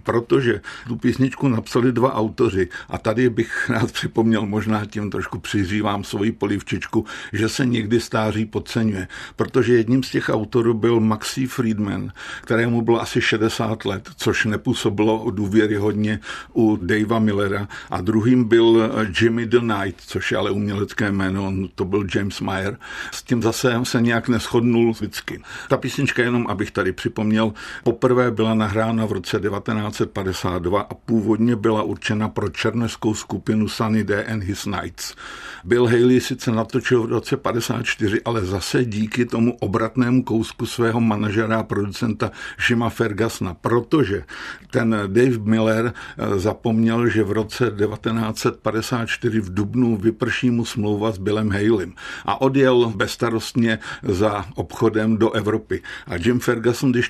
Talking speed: 145 wpm